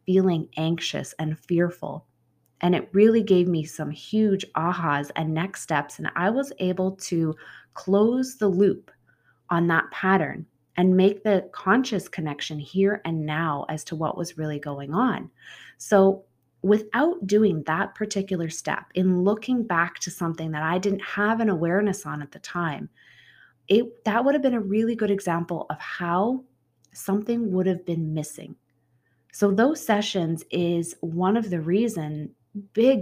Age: 20-39